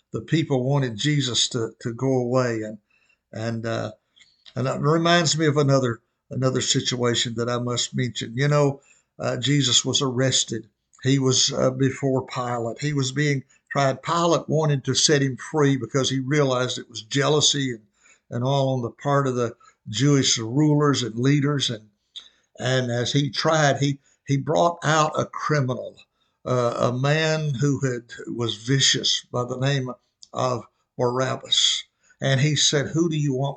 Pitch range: 125-145 Hz